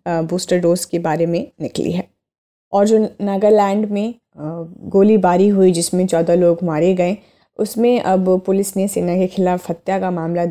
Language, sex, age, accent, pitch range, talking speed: Hindi, female, 20-39, native, 170-200 Hz, 160 wpm